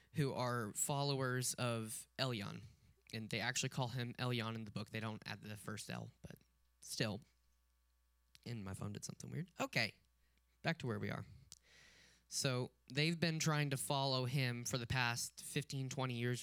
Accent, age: American, 10-29